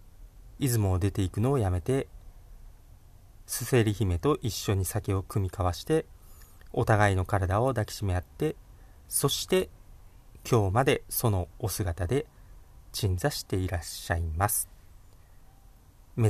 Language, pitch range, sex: Japanese, 90-120 Hz, male